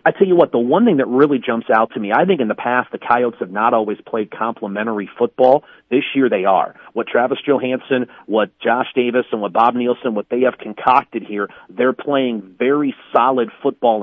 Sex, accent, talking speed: male, American, 215 wpm